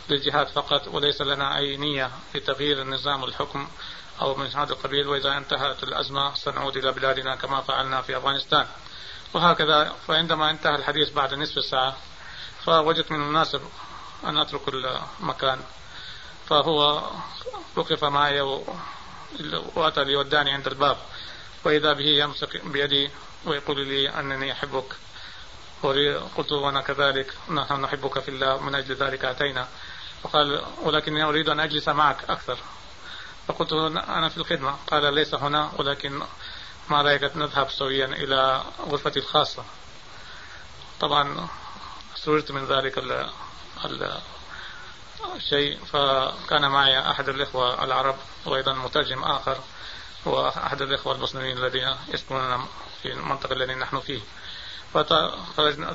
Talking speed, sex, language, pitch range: 120 wpm, male, Arabic, 135-150 Hz